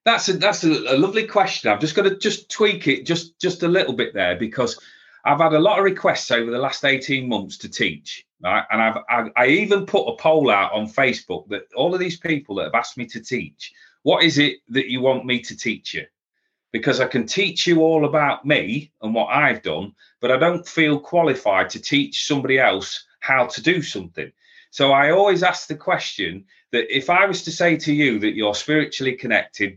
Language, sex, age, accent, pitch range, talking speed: English, male, 30-49, British, 115-170 Hz, 220 wpm